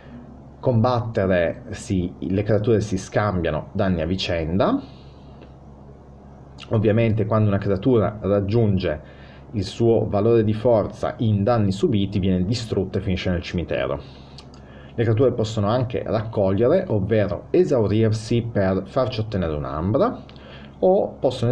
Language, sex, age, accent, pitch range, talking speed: Italian, male, 30-49, native, 75-110 Hz, 110 wpm